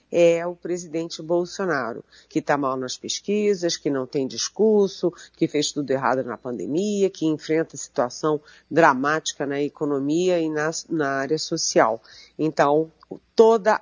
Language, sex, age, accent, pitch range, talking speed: Portuguese, female, 40-59, Brazilian, 150-190 Hz, 140 wpm